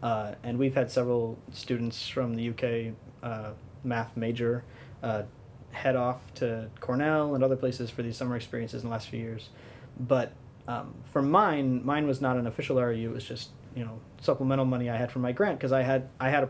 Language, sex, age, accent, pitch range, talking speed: English, male, 30-49, American, 120-135 Hz, 205 wpm